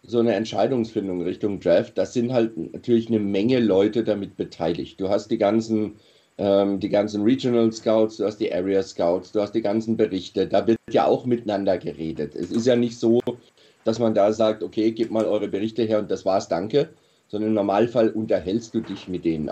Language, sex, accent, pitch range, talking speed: German, male, German, 100-115 Hz, 205 wpm